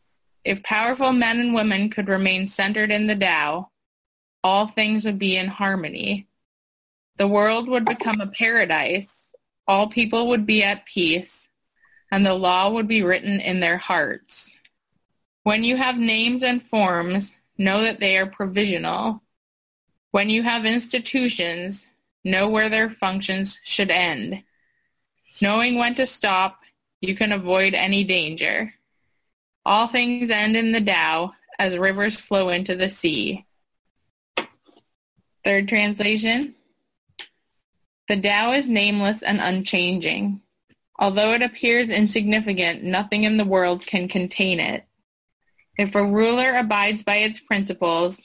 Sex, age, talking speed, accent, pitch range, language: female, 20-39, 130 wpm, American, 190-225 Hz, English